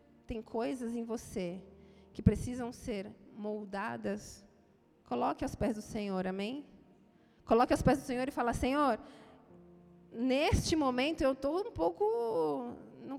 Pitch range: 230-315 Hz